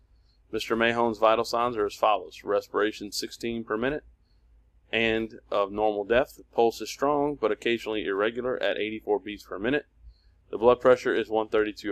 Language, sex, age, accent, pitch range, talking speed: English, male, 30-49, American, 90-120 Hz, 155 wpm